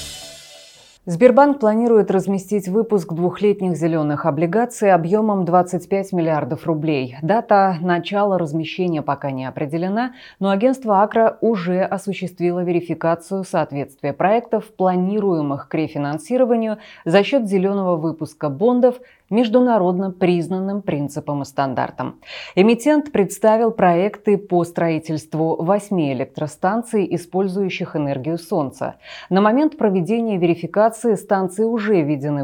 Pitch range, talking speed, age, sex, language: 160-215 Hz, 100 wpm, 20-39, female, Russian